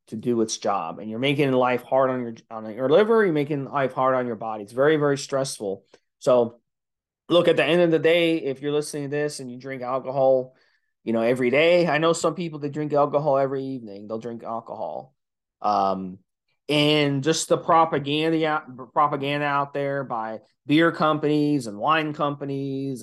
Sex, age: male, 30-49